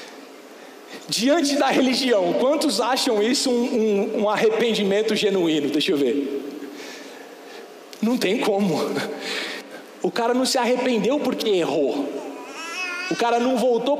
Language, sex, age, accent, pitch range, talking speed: Portuguese, male, 40-59, Brazilian, 195-250 Hz, 115 wpm